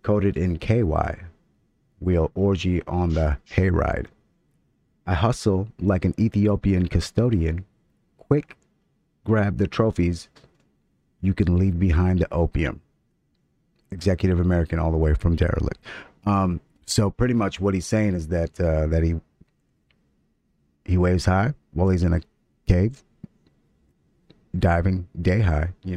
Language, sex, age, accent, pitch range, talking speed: English, male, 30-49, American, 85-100 Hz, 125 wpm